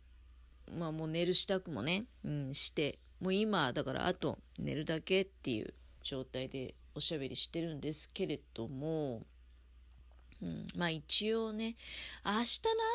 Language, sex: Japanese, female